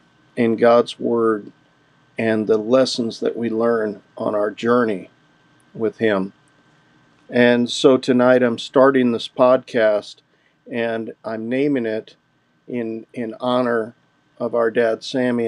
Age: 50-69